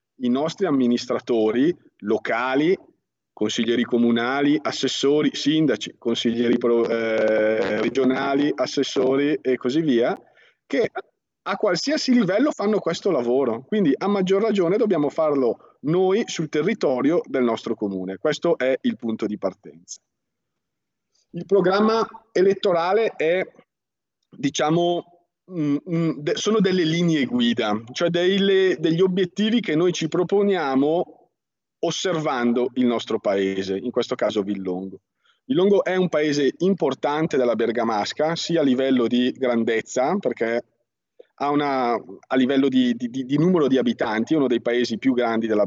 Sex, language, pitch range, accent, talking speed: male, Italian, 120-175 Hz, native, 125 wpm